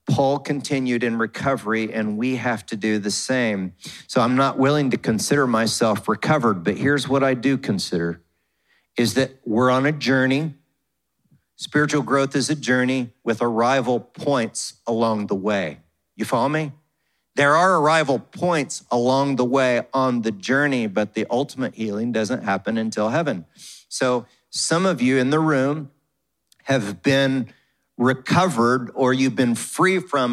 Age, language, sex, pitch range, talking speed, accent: 40-59, English, male, 125-155 Hz, 155 wpm, American